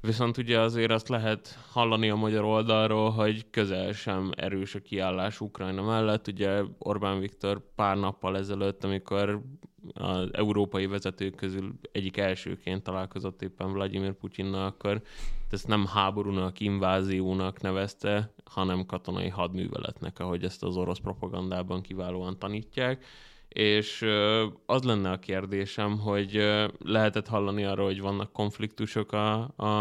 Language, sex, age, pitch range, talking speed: Hungarian, male, 20-39, 95-110 Hz, 125 wpm